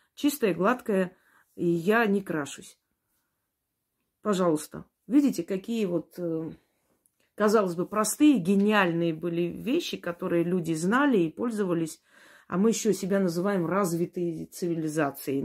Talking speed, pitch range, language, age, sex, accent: 110 wpm, 175-225 Hz, Russian, 30-49, female, native